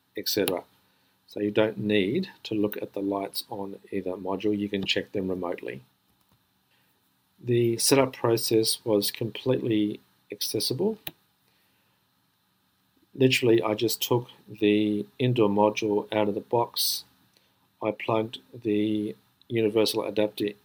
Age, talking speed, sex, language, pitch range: 50-69, 115 wpm, male, English, 100-115 Hz